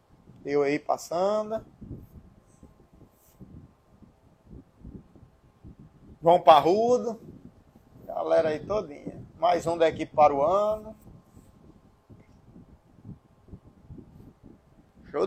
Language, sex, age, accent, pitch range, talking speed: Portuguese, male, 20-39, Brazilian, 150-185 Hz, 60 wpm